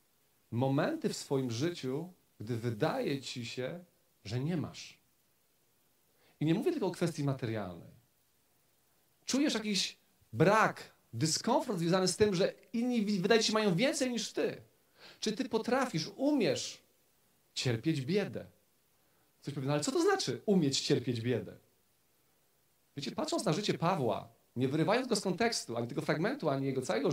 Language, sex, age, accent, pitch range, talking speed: Polish, male, 40-59, native, 135-220 Hz, 145 wpm